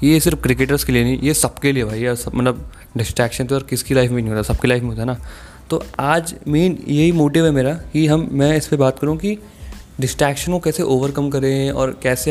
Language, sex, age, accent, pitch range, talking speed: Hindi, male, 20-39, native, 115-140 Hz, 245 wpm